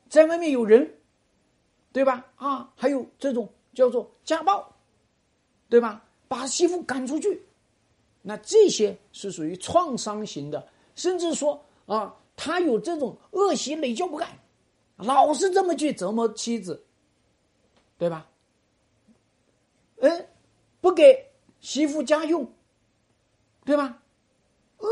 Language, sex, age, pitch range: Chinese, male, 50-69, 190-310 Hz